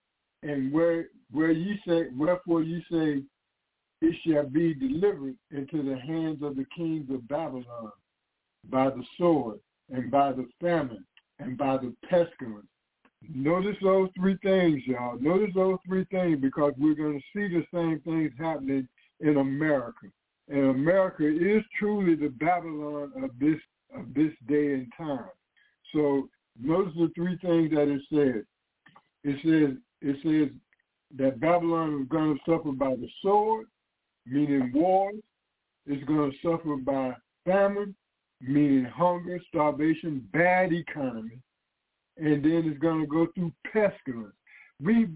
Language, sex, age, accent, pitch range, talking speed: English, male, 60-79, American, 140-175 Hz, 140 wpm